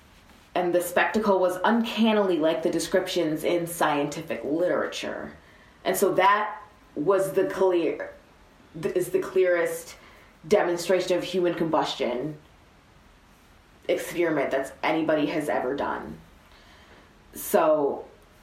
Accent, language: American, English